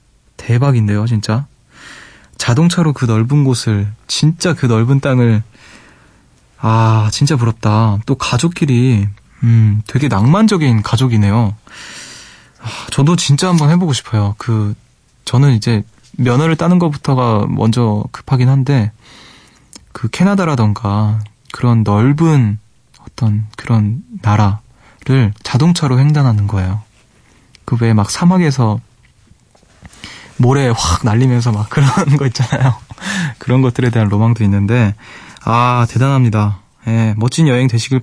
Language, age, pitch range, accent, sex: Korean, 20-39, 110-140 Hz, native, male